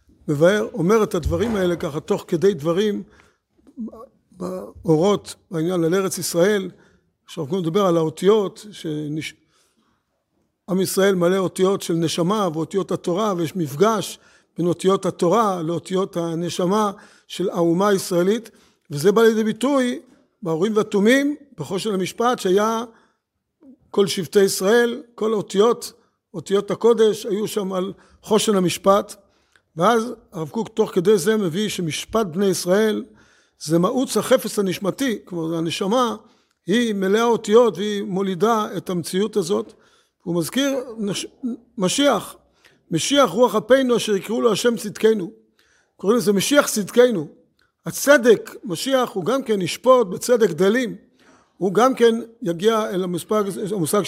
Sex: male